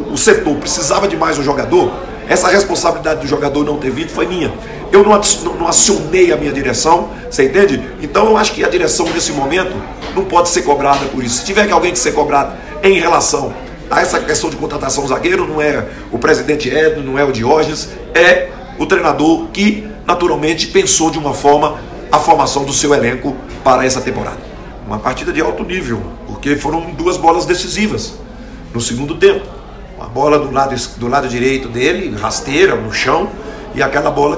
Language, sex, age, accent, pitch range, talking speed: Portuguese, male, 50-69, Brazilian, 135-175 Hz, 185 wpm